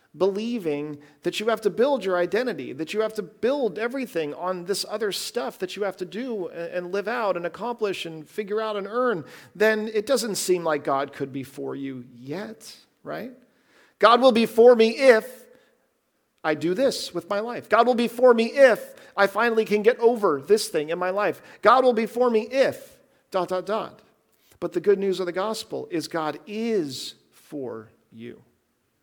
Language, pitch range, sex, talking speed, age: English, 165-225 Hz, male, 195 wpm, 40-59